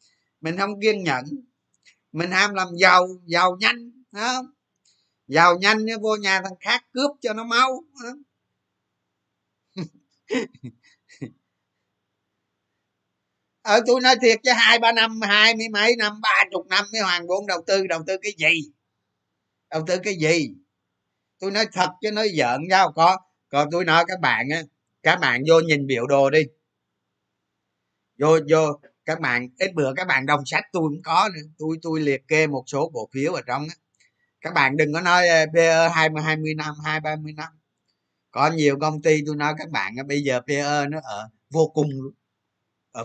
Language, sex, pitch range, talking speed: Vietnamese, male, 155-205 Hz, 175 wpm